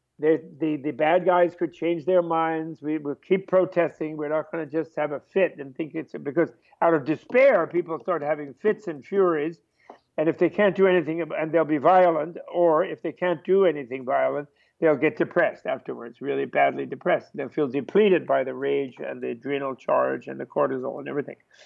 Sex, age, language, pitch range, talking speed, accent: male, 60-79, English, 155-190 Hz, 200 wpm, American